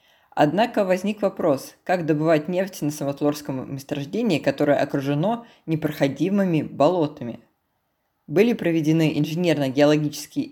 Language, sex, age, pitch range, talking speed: Russian, female, 20-39, 140-175 Hz, 90 wpm